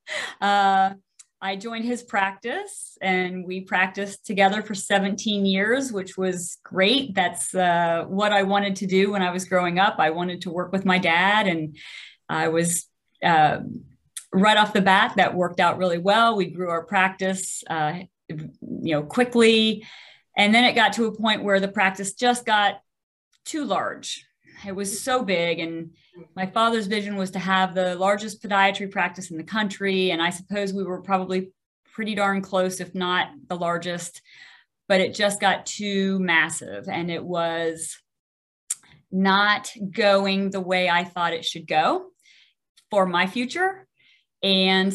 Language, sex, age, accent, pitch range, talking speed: English, female, 40-59, American, 180-215 Hz, 165 wpm